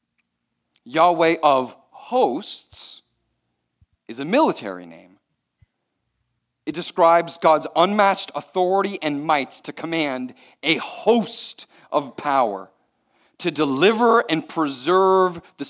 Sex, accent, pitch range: male, American, 105-150 Hz